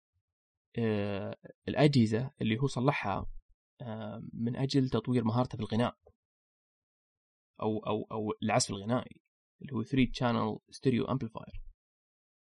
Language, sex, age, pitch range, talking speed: Arabic, male, 20-39, 105-140 Hz, 95 wpm